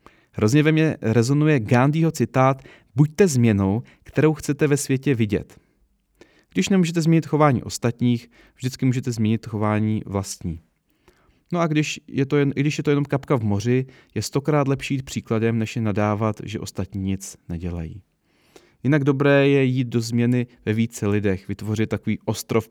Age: 30-49